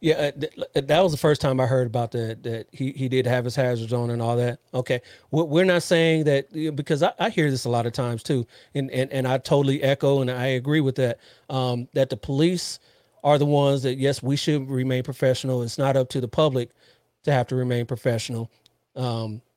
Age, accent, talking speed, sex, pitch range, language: 40-59, American, 220 wpm, male, 125-145 Hz, English